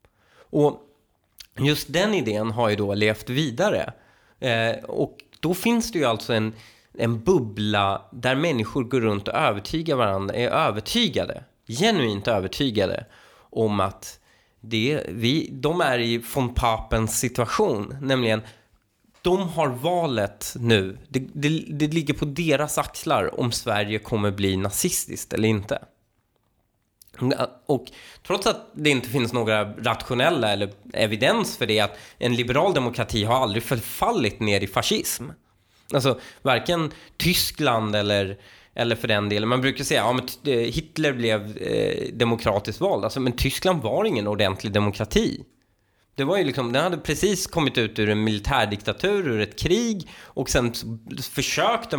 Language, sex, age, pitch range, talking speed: Swedish, male, 20-39, 105-140 Hz, 145 wpm